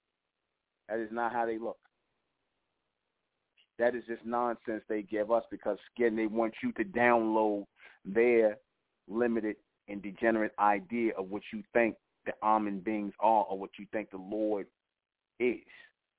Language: English